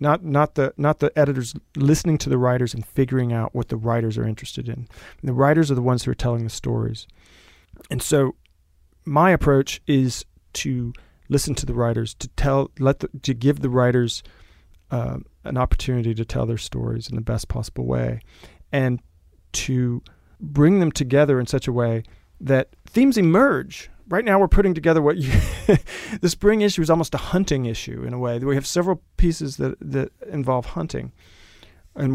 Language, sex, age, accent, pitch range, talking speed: English, male, 40-59, American, 110-140 Hz, 185 wpm